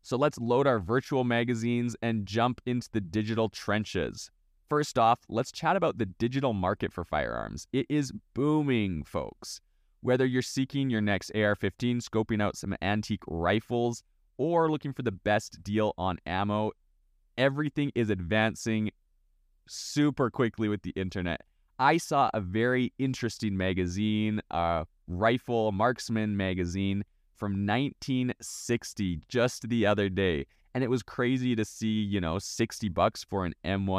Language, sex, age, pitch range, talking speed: English, male, 20-39, 95-120 Hz, 145 wpm